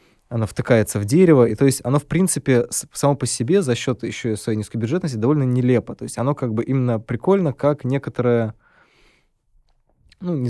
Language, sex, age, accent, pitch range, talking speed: Russian, male, 20-39, native, 115-135 Hz, 190 wpm